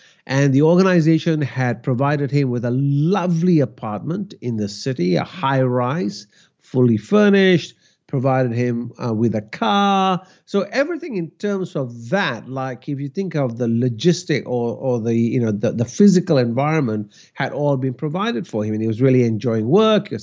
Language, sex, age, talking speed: English, male, 50-69, 180 wpm